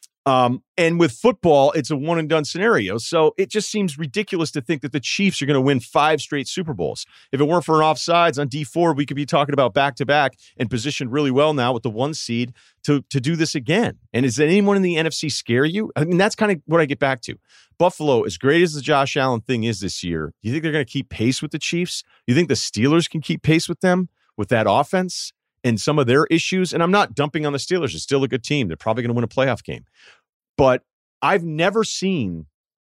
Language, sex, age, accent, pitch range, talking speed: English, male, 40-59, American, 115-160 Hz, 250 wpm